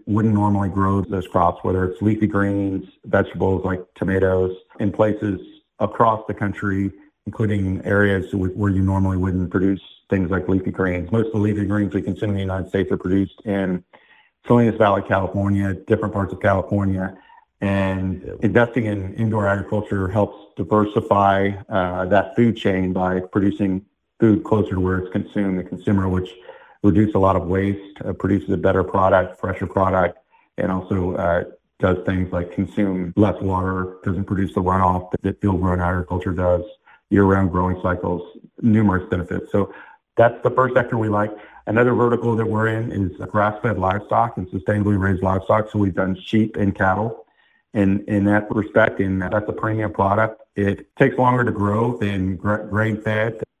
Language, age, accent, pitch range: English, 50-69, American, 95-105 Hz